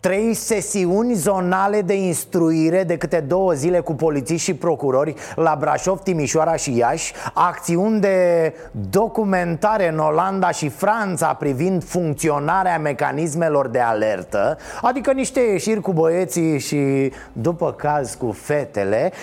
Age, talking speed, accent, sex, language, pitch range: 30-49, 125 wpm, native, male, Romanian, 150-205 Hz